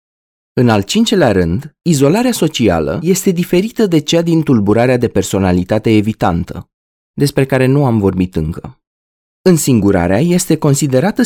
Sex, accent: male, native